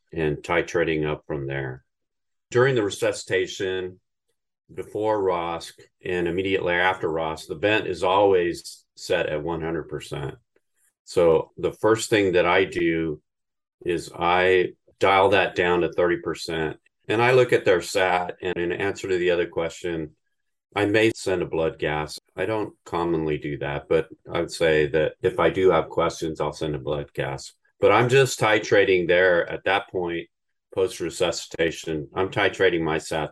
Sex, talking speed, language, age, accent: male, 155 wpm, English, 40-59, American